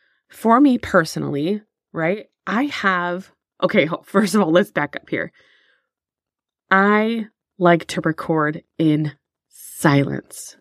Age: 20-39